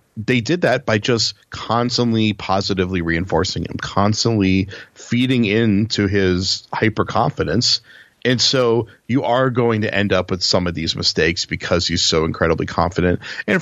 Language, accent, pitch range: English, American, 95-120 Hz